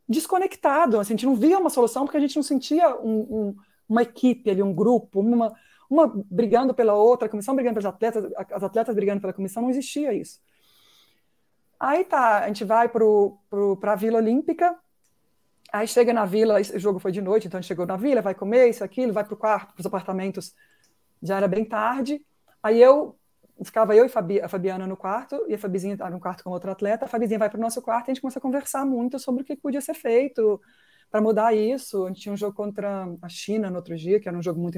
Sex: female